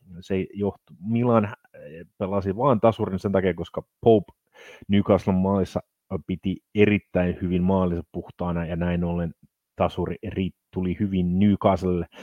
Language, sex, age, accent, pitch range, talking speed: Finnish, male, 30-49, native, 90-110 Hz, 115 wpm